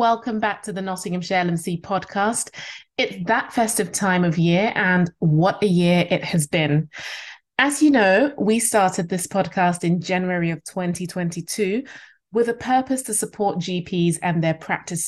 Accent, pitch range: British, 170-205 Hz